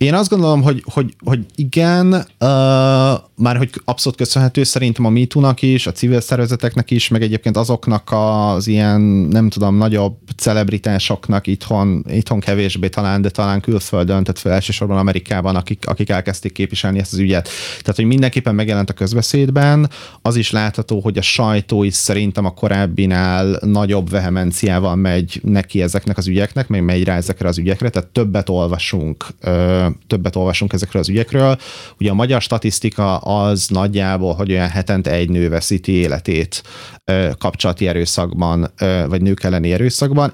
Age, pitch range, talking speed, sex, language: 30-49, 95-120 Hz, 150 wpm, male, Hungarian